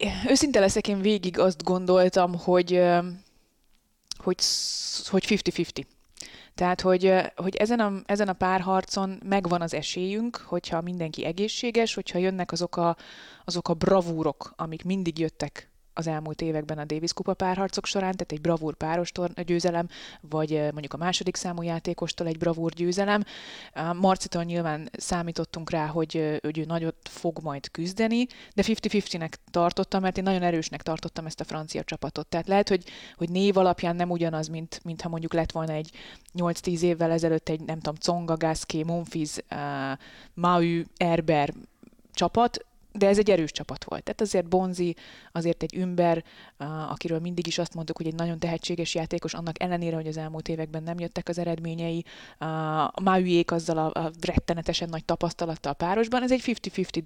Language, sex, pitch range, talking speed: Hungarian, female, 165-190 Hz, 165 wpm